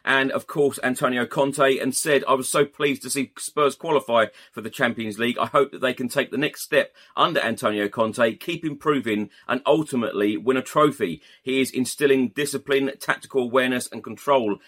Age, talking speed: 30-49, 190 wpm